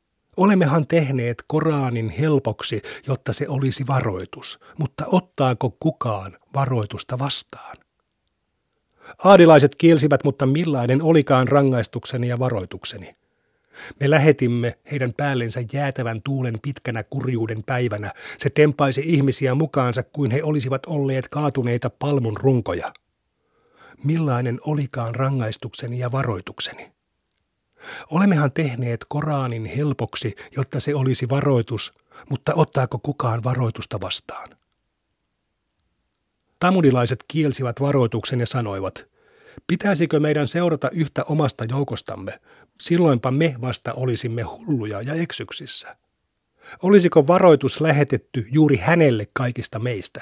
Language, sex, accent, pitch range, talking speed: Finnish, male, native, 120-150 Hz, 100 wpm